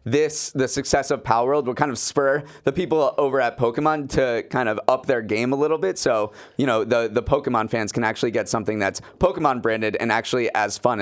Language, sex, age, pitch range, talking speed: English, male, 30-49, 115-145 Hz, 230 wpm